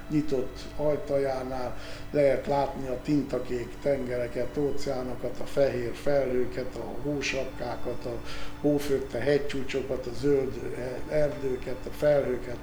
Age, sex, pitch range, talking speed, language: 60-79, male, 130-150 Hz, 105 wpm, Hungarian